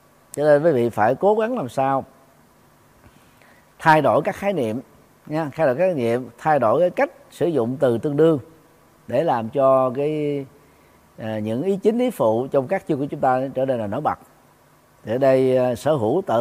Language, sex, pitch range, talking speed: Vietnamese, male, 115-145 Hz, 195 wpm